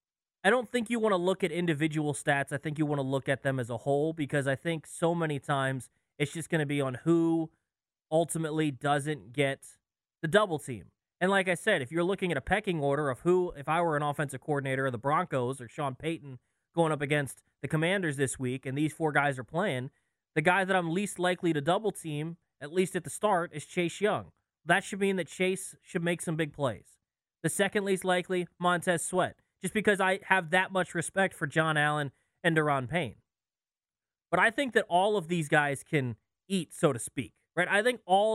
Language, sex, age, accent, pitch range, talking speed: English, male, 20-39, American, 145-190 Hz, 220 wpm